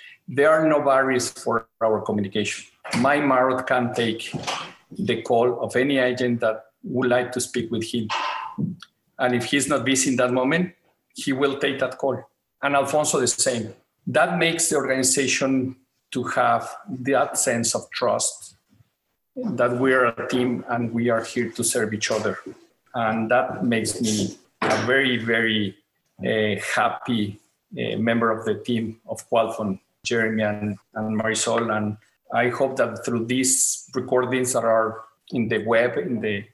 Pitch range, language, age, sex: 115-130 Hz, English, 50-69, male